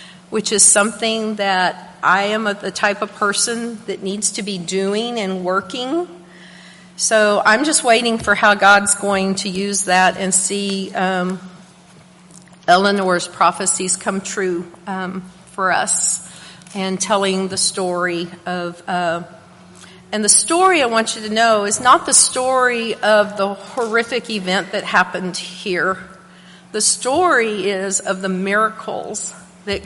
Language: English